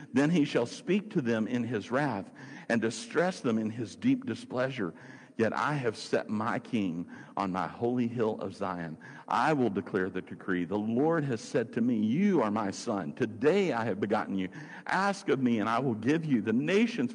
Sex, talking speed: male, 205 wpm